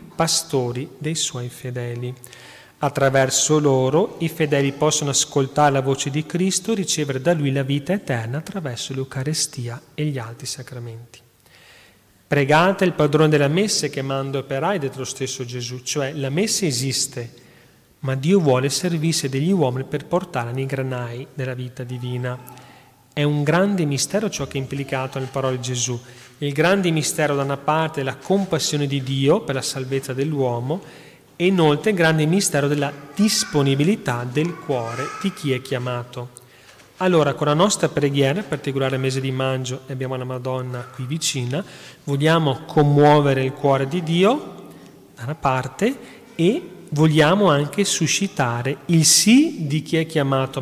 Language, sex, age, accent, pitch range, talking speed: Italian, male, 30-49, native, 130-155 Hz, 155 wpm